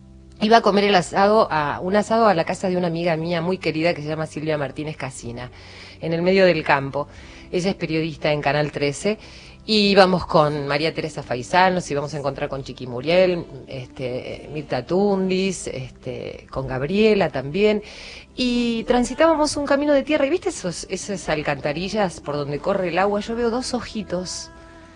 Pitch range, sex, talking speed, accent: 145-195 Hz, female, 180 wpm, Argentinian